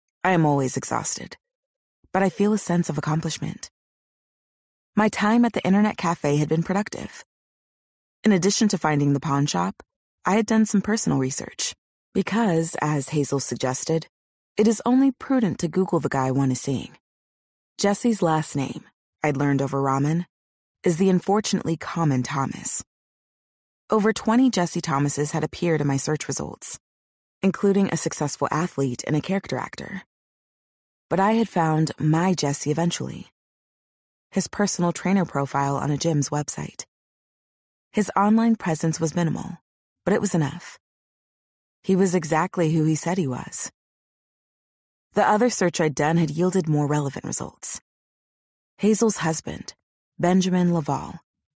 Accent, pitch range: American, 145-195 Hz